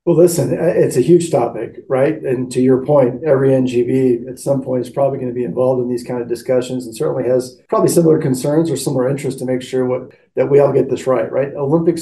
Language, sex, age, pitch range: English, male, 40-59, 125-140 Hz